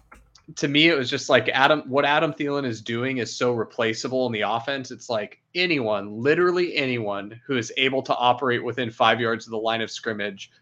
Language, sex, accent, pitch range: English, male, American, 110-130 Hz